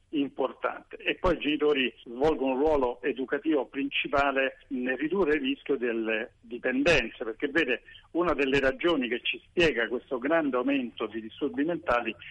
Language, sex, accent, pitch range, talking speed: Italian, male, native, 120-165 Hz, 145 wpm